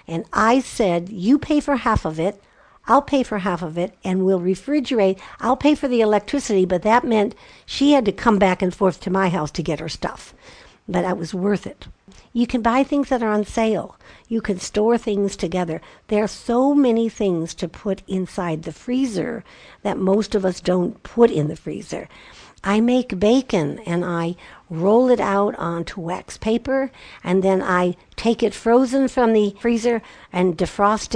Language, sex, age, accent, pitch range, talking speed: English, female, 60-79, American, 180-240 Hz, 190 wpm